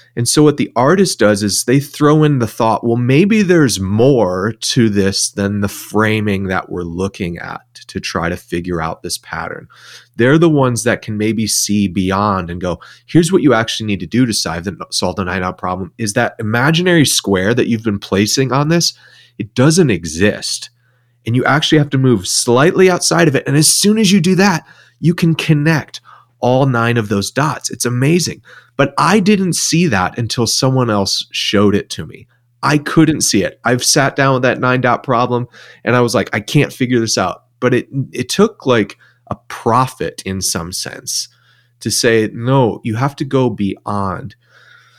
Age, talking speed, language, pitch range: 30-49, 195 wpm, English, 105-145 Hz